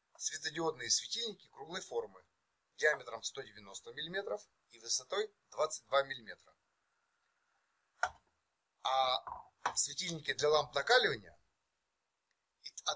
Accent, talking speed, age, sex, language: native, 80 wpm, 30-49, male, Russian